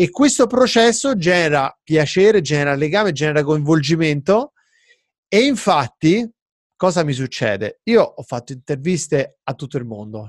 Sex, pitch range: male, 135-180 Hz